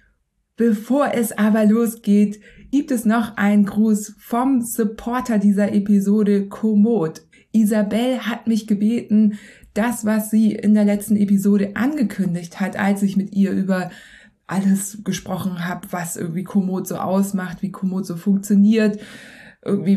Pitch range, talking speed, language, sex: 195-220 Hz, 135 wpm, German, female